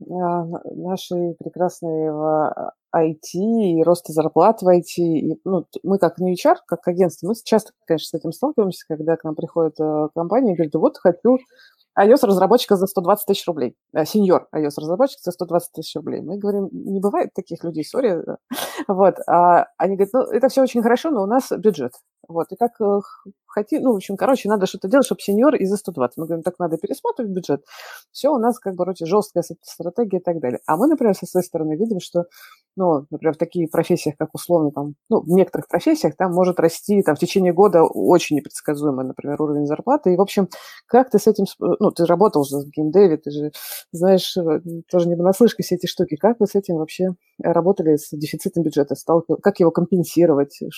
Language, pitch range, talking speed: Russian, 160-200 Hz, 185 wpm